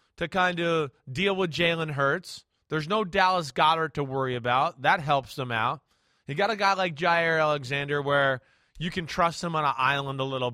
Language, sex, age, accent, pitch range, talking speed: English, male, 20-39, American, 155-200 Hz, 200 wpm